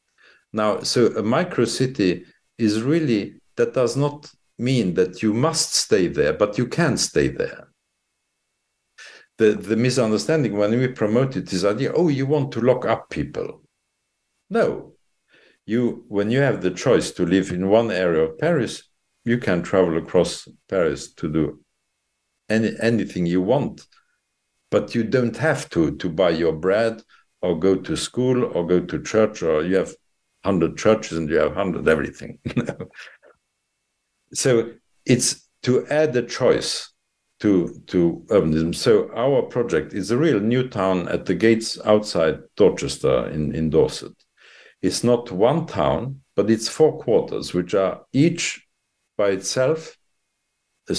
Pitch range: 95-130 Hz